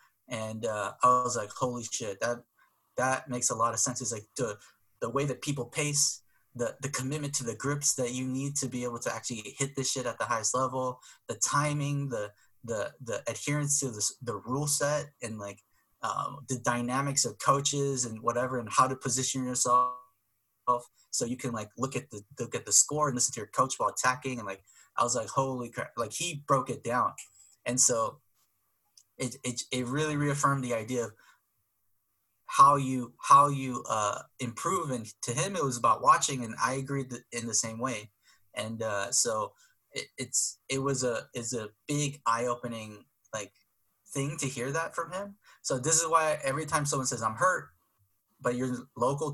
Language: English